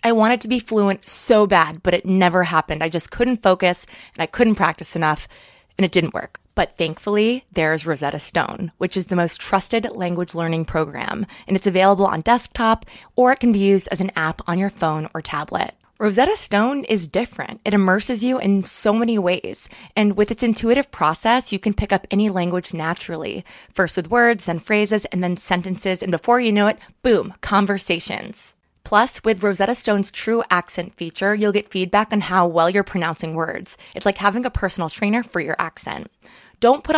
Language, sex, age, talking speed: English, female, 20-39, 195 wpm